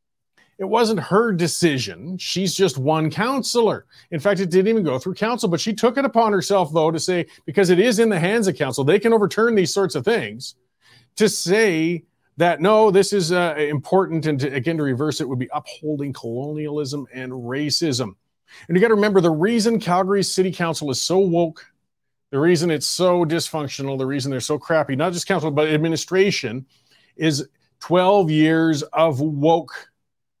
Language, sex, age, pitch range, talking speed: English, male, 40-59, 145-195 Hz, 185 wpm